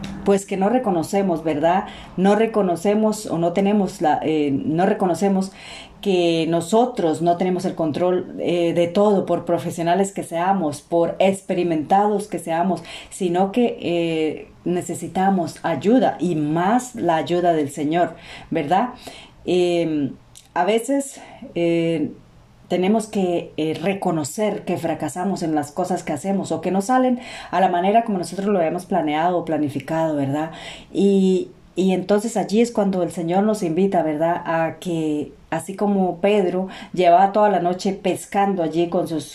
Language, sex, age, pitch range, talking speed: Spanish, female, 40-59, 170-200 Hz, 150 wpm